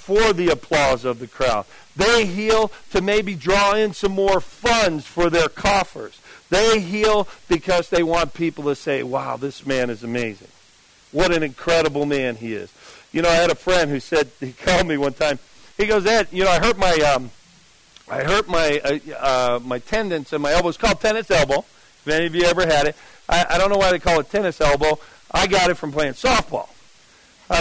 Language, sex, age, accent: English, male, 50-69, American